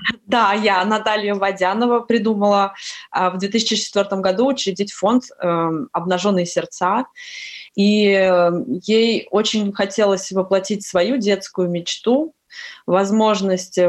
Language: Russian